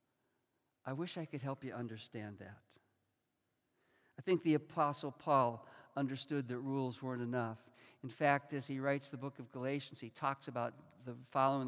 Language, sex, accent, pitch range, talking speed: English, male, American, 130-155 Hz, 165 wpm